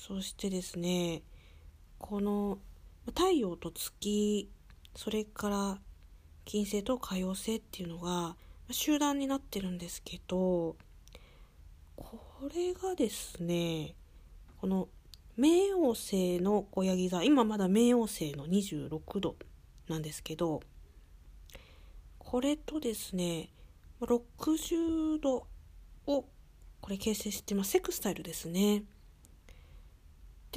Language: Japanese